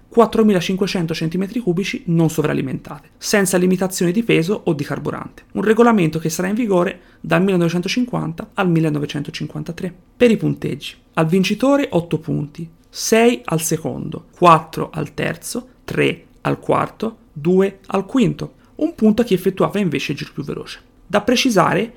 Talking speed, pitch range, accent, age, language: 140 wpm, 155-205 Hz, native, 30-49, Italian